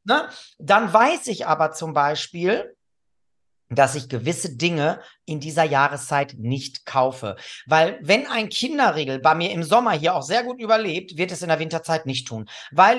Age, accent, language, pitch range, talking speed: 40-59, German, German, 155-225 Hz, 170 wpm